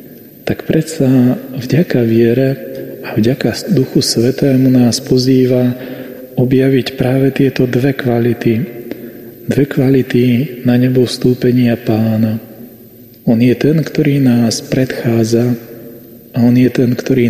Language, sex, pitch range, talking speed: Slovak, male, 120-140 Hz, 110 wpm